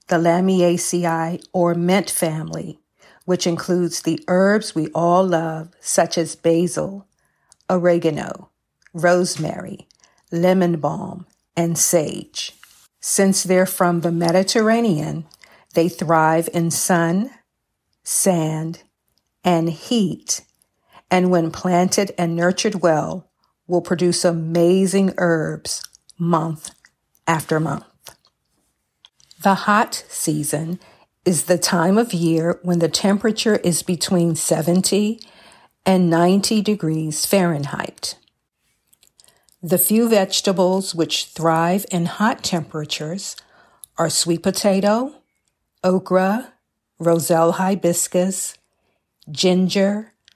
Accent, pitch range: American, 165-190 Hz